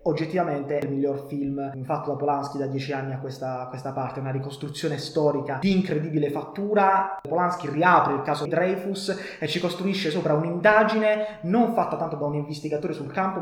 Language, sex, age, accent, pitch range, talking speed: Italian, male, 20-39, native, 145-175 Hz, 180 wpm